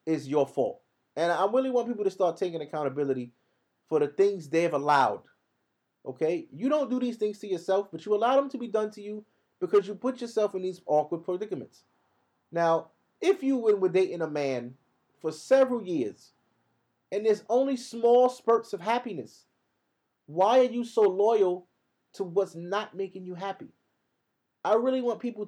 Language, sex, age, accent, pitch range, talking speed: English, male, 30-49, American, 180-240 Hz, 175 wpm